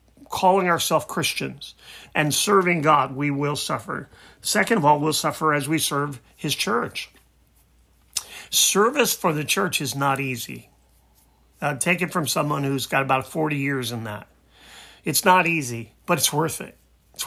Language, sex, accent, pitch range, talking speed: English, male, American, 135-165 Hz, 160 wpm